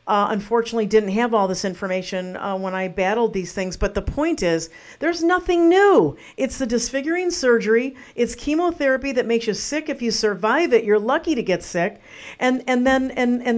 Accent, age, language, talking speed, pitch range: American, 50-69, English, 195 wpm, 175-240 Hz